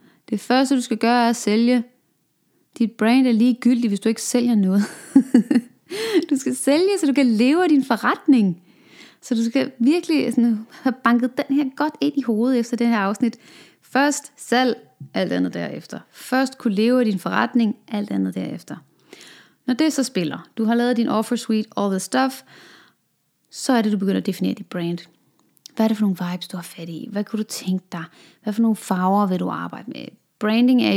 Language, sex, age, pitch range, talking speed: English, female, 30-49, 205-270 Hz, 205 wpm